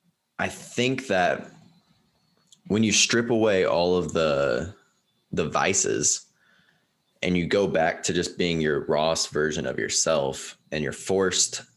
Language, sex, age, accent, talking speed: English, male, 20-39, American, 140 wpm